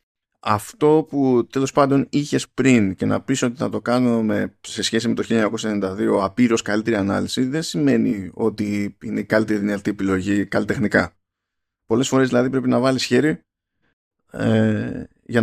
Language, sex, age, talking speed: Greek, male, 20-39, 155 wpm